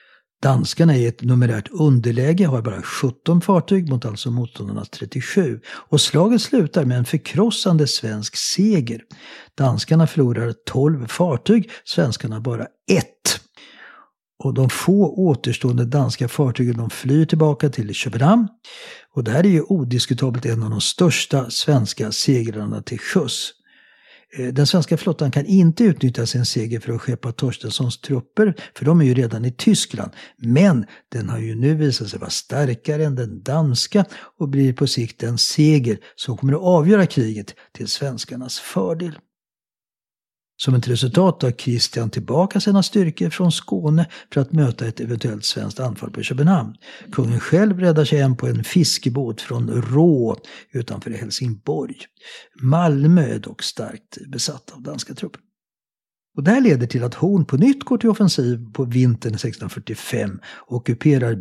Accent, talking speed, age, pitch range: Swedish, 150 wpm, 60-79, 120-165 Hz